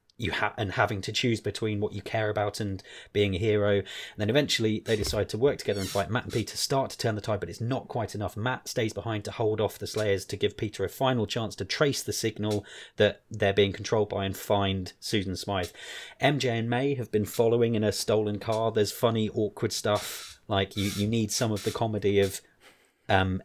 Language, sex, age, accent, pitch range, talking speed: English, male, 20-39, British, 100-110 Hz, 230 wpm